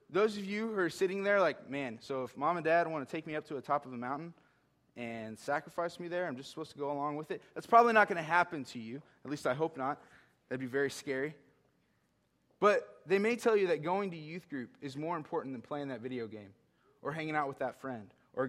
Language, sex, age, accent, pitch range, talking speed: English, male, 20-39, American, 130-180 Hz, 255 wpm